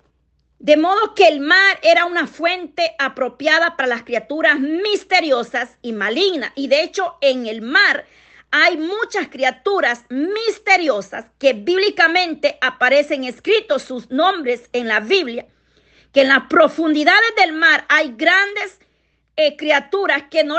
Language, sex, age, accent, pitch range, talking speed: Spanish, female, 40-59, American, 270-350 Hz, 135 wpm